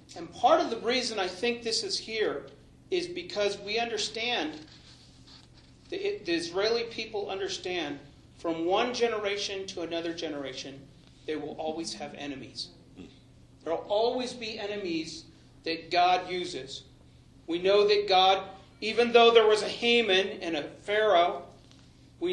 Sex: male